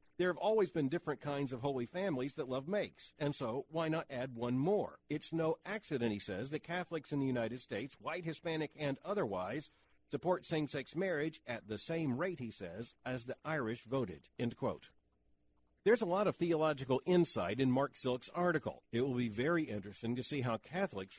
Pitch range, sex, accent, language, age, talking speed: 125-160 Hz, male, American, English, 50-69, 195 wpm